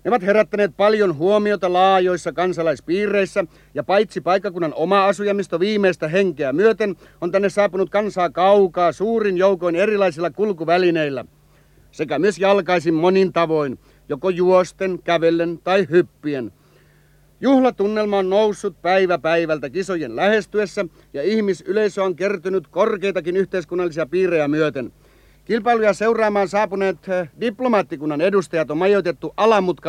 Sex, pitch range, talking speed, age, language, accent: male, 170-200 Hz, 110 wpm, 60-79, Finnish, native